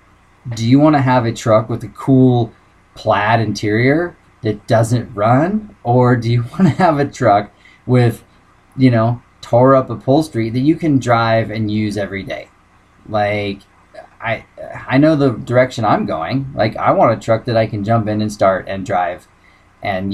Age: 20-39